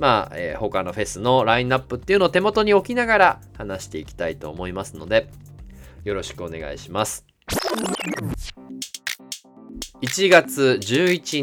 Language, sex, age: Japanese, male, 20-39